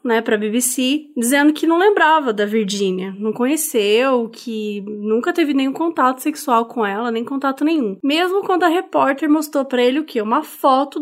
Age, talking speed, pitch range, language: 20-39, 185 wpm, 225-300 Hz, Portuguese